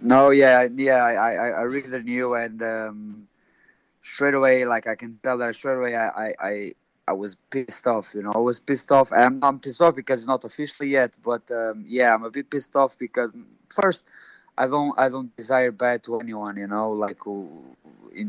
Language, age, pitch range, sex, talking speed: English, 20-39, 110-130 Hz, male, 205 wpm